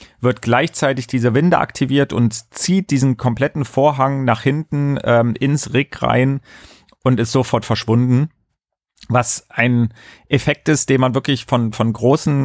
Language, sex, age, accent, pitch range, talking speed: German, male, 40-59, German, 115-135 Hz, 145 wpm